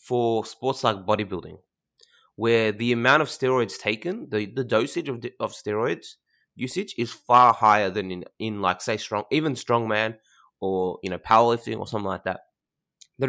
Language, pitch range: English, 105-135 Hz